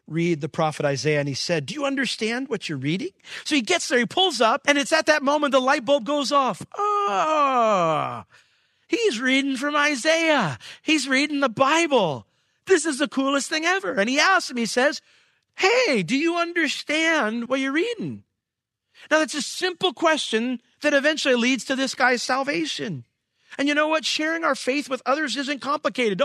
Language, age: English, 40-59